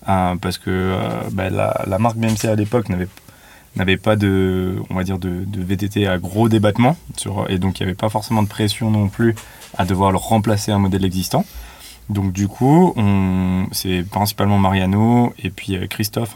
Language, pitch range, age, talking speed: French, 95-110 Hz, 20-39, 200 wpm